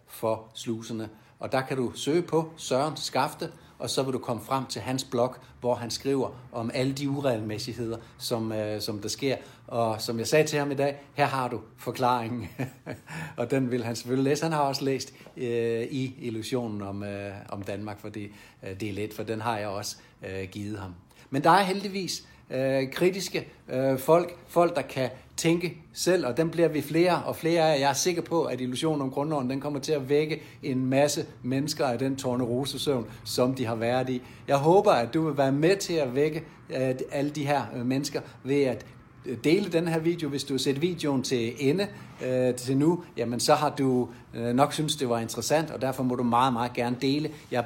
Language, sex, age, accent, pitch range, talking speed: Danish, male, 60-79, native, 120-145 Hz, 210 wpm